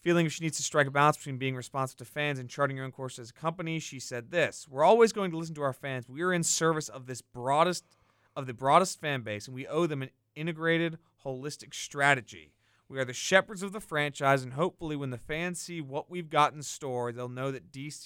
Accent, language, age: American, English, 30-49